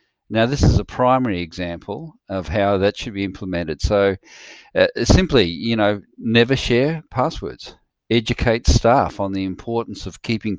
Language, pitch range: English, 95-115 Hz